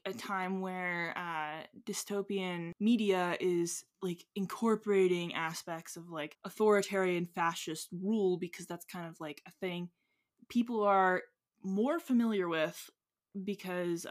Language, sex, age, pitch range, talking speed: English, female, 20-39, 175-225 Hz, 120 wpm